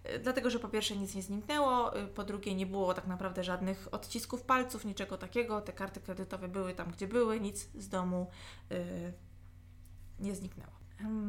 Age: 20-39